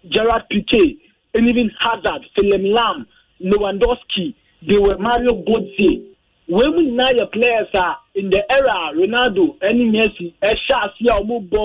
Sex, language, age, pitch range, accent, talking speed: male, English, 40-59, 190-245 Hz, Nigerian, 140 wpm